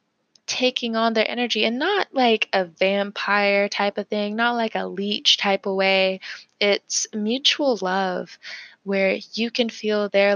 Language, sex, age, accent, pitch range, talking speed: English, female, 20-39, American, 190-230 Hz, 155 wpm